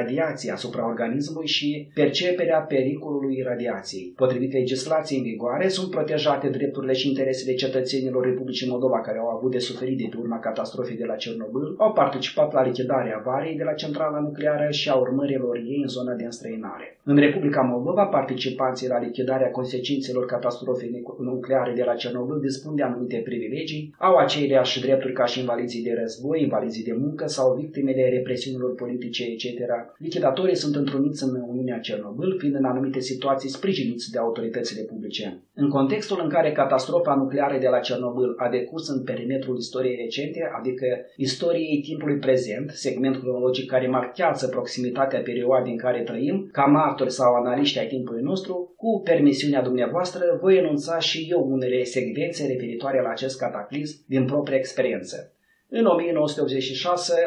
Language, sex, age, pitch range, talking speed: Romanian, male, 30-49, 125-145 Hz, 150 wpm